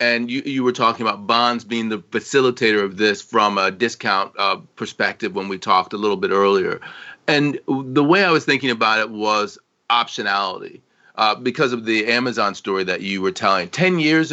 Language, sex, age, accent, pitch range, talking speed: English, male, 40-59, American, 105-130 Hz, 195 wpm